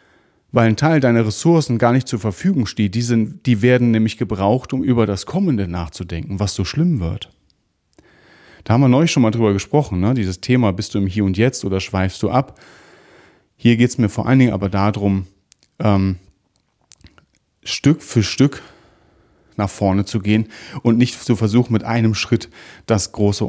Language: German